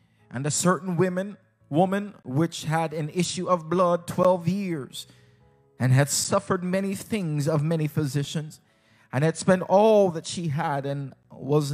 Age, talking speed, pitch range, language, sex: 30-49, 150 wpm, 120-160 Hz, English, male